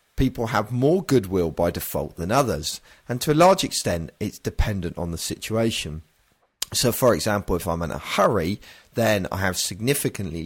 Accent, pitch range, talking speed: British, 85-115 Hz, 170 wpm